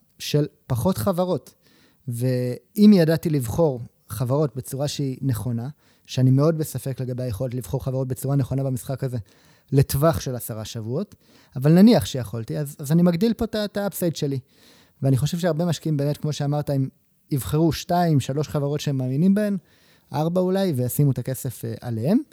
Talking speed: 155 wpm